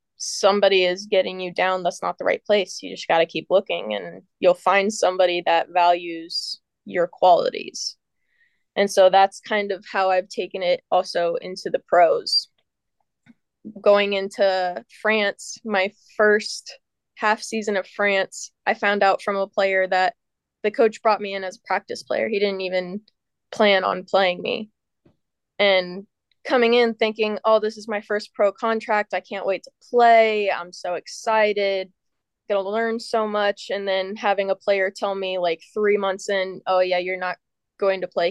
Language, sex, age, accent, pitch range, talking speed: English, female, 20-39, American, 185-215 Hz, 170 wpm